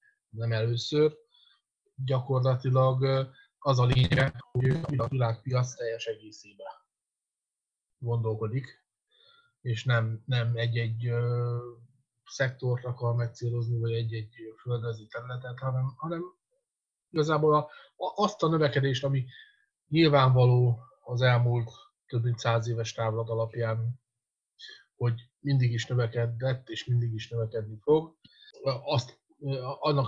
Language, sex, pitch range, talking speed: Hungarian, male, 115-130 Hz, 105 wpm